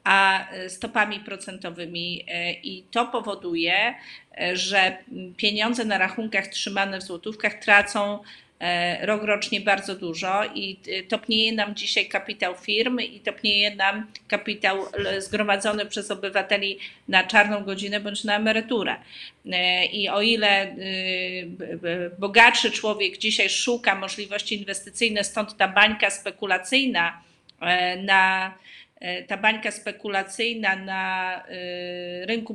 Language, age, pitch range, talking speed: Polish, 40-59, 195-225 Hz, 105 wpm